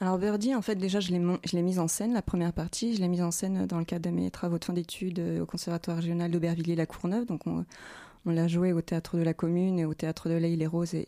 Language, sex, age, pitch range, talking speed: French, female, 20-39, 175-205 Hz, 265 wpm